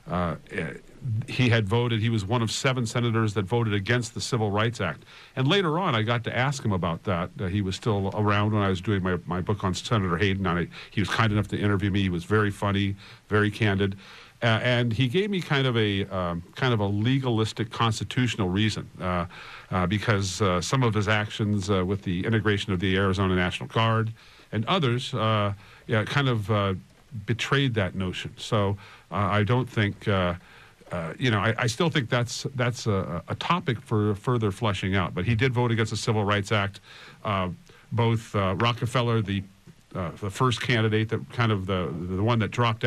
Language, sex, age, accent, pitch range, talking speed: English, male, 50-69, American, 100-120 Hz, 195 wpm